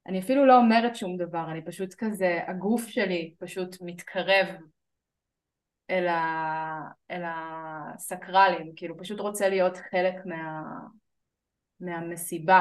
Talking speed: 115 wpm